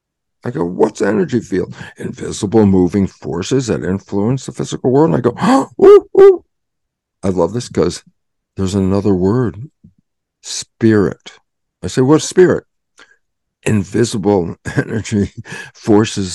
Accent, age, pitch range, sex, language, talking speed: American, 60-79, 95-120 Hz, male, English, 125 wpm